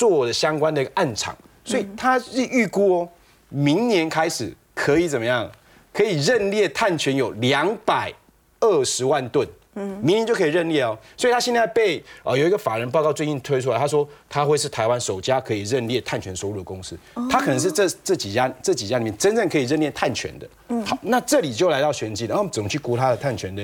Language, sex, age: Chinese, male, 30-49